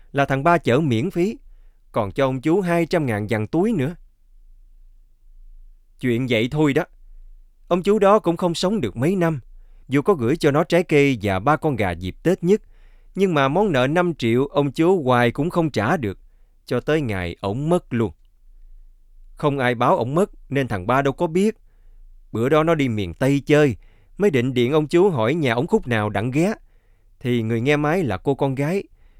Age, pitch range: 20-39, 110-170 Hz